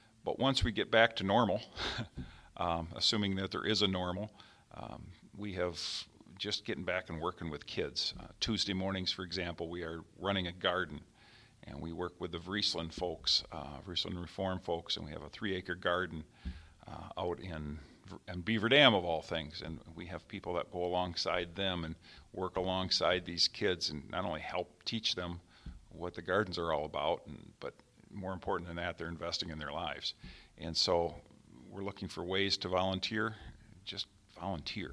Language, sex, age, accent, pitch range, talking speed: English, male, 50-69, American, 85-100 Hz, 180 wpm